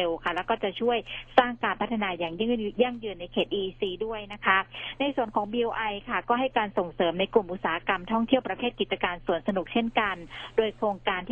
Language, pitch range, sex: Thai, 175-225 Hz, female